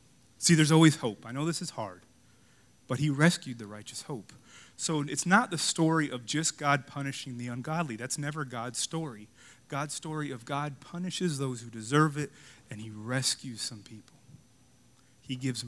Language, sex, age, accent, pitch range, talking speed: English, male, 30-49, American, 120-140 Hz, 175 wpm